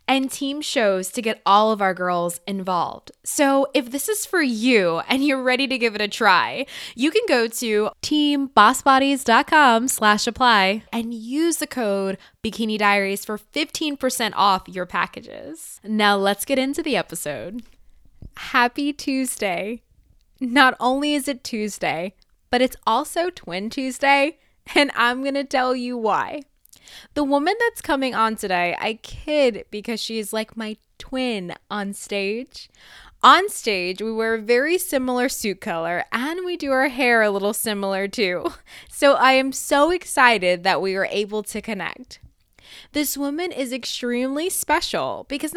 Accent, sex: American, female